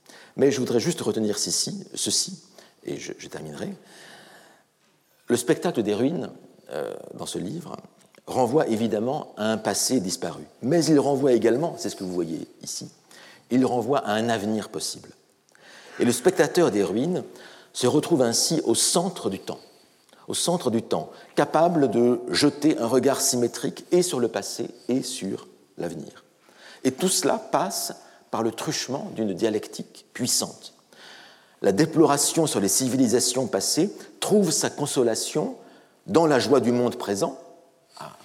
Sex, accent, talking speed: male, French, 145 wpm